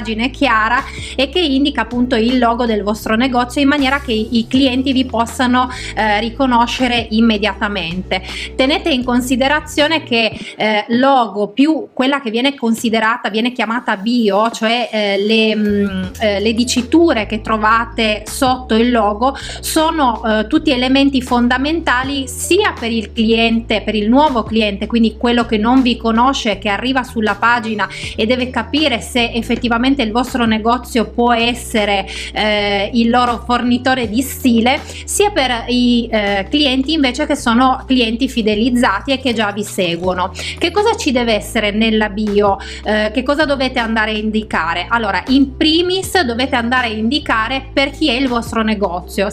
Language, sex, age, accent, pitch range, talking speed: Italian, female, 30-49, native, 220-260 Hz, 155 wpm